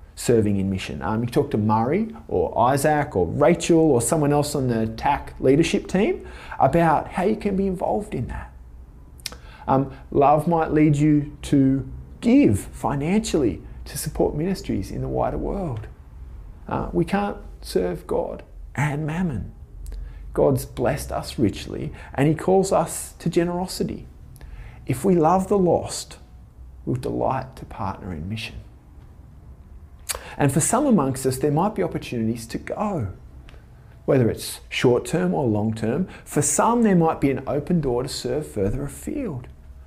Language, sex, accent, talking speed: English, male, Australian, 150 wpm